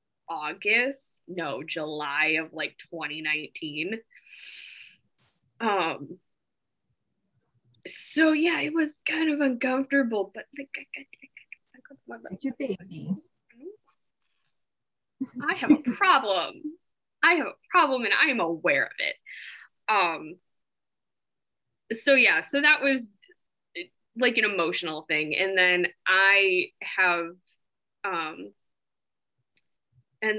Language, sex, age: English, female, 10-29